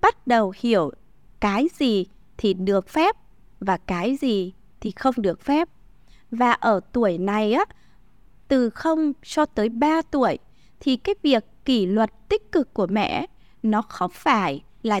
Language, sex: Vietnamese, female